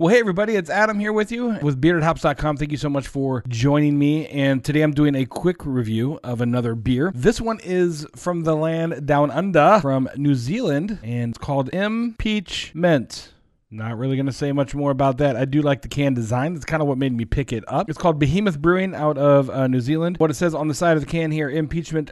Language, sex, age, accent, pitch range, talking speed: English, male, 40-59, American, 125-165 Hz, 235 wpm